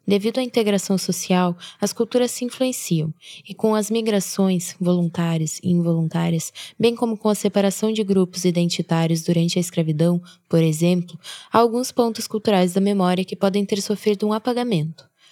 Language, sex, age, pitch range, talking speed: Portuguese, female, 10-29, 180-220 Hz, 155 wpm